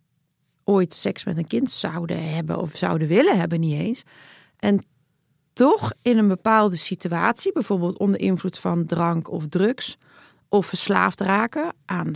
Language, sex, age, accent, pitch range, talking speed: Dutch, female, 40-59, Dutch, 170-225 Hz, 150 wpm